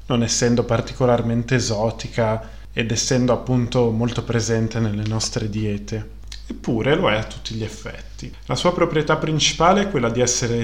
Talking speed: 150 wpm